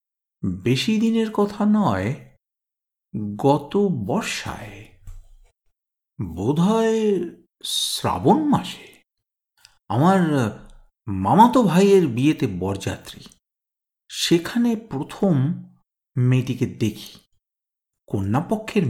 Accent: native